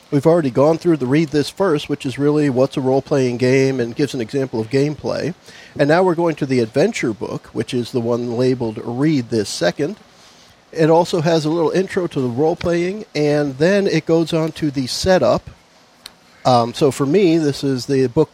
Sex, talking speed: male, 205 wpm